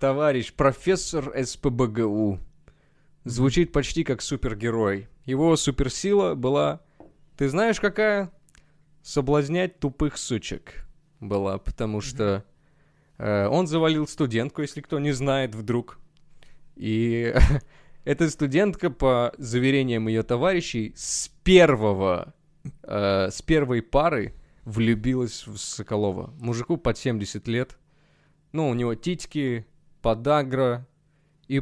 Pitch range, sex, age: 115-155 Hz, male, 20-39